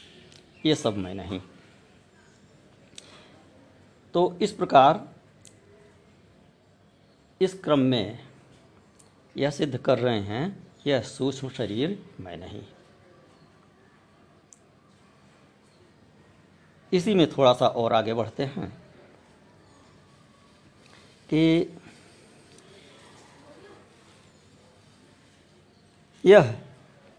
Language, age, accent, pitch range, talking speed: Hindi, 50-69, native, 120-155 Hz, 65 wpm